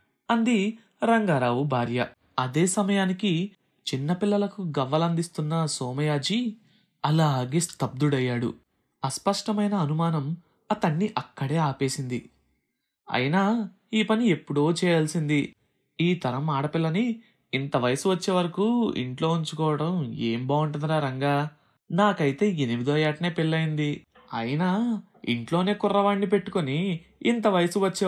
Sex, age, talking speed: male, 20-39, 90 wpm